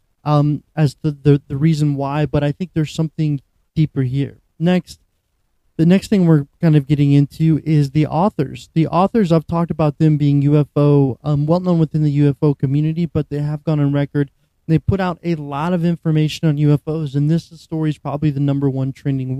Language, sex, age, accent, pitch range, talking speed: English, male, 30-49, American, 140-155 Hz, 200 wpm